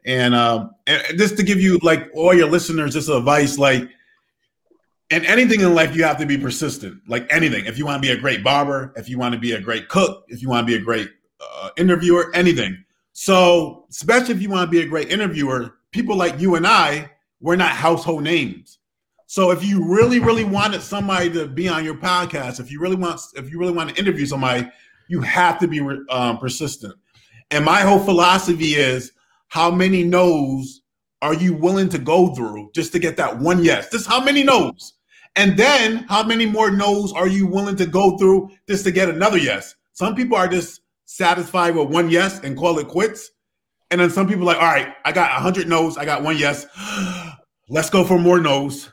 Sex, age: male, 30-49